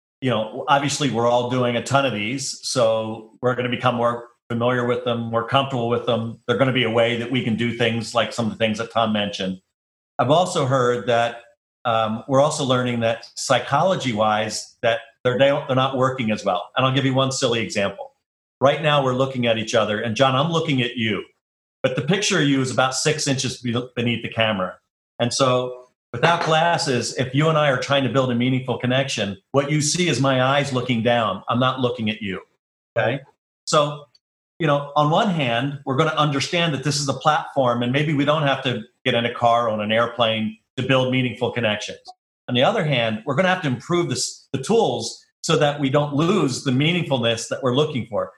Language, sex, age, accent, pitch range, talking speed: English, male, 40-59, American, 120-145 Hz, 225 wpm